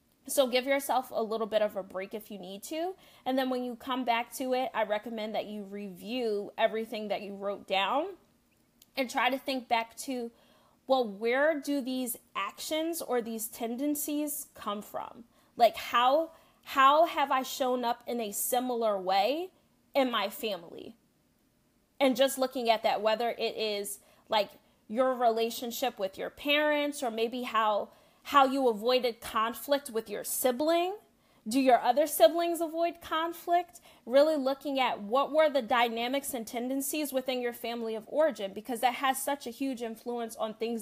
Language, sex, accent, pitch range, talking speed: English, female, American, 220-275 Hz, 170 wpm